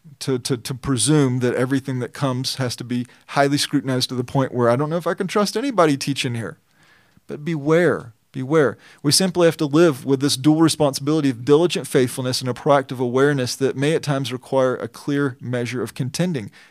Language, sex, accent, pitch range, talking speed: English, male, American, 125-150 Hz, 200 wpm